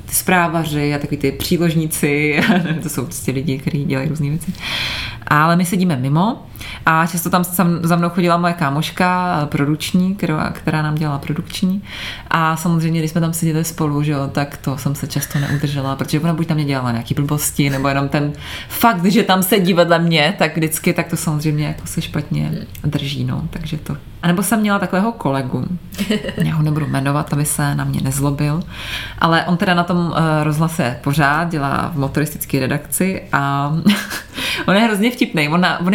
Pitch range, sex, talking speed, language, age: 145-180 Hz, female, 175 wpm, Czech, 20-39